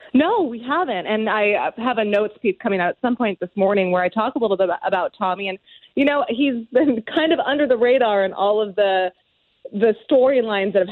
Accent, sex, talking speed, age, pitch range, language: American, female, 230 wpm, 20-39, 195-255 Hz, English